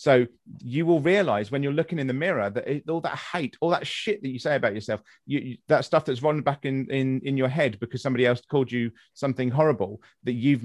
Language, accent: English, British